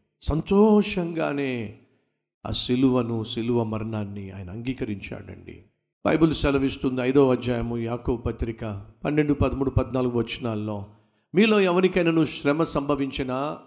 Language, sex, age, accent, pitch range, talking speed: Telugu, male, 50-69, native, 105-160 Hz, 95 wpm